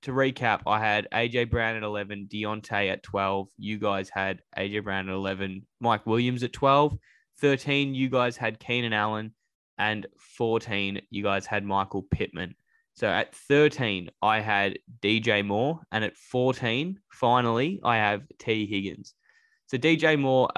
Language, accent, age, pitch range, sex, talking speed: English, Australian, 10-29, 100-115 Hz, male, 155 wpm